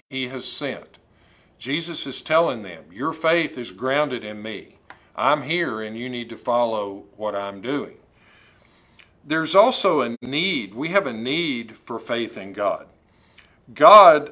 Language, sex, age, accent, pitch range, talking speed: English, male, 50-69, American, 110-135 Hz, 150 wpm